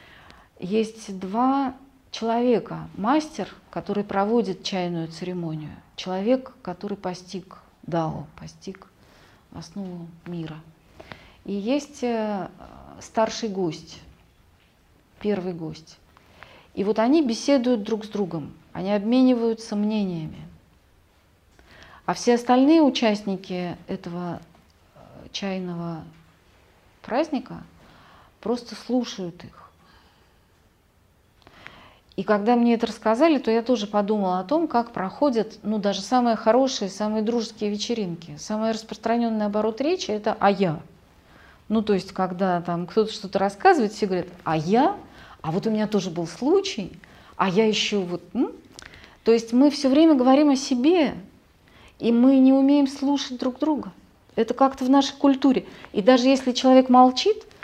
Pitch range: 180-250 Hz